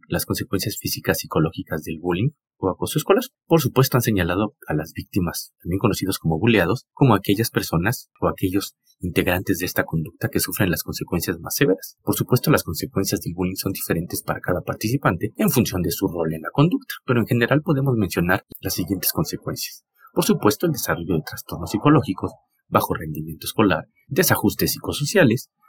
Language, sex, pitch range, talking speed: Spanish, male, 85-130 Hz, 175 wpm